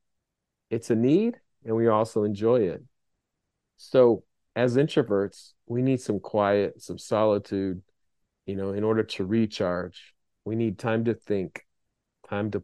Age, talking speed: 40-59, 140 wpm